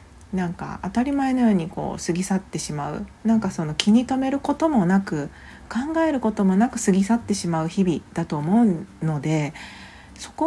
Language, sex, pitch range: Japanese, female, 165-210 Hz